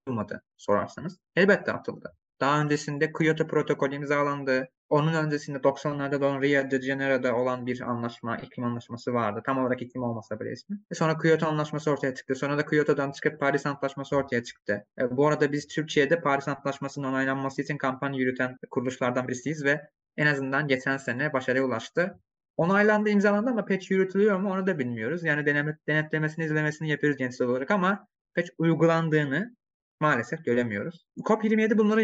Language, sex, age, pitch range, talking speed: Turkish, male, 20-39, 135-165 Hz, 155 wpm